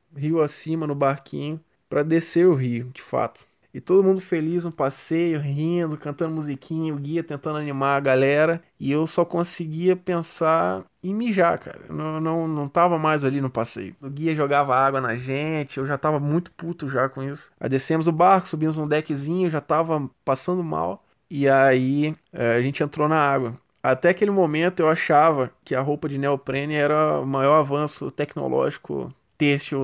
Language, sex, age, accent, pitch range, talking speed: Portuguese, male, 20-39, Brazilian, 140-170 Hz, 180 wpm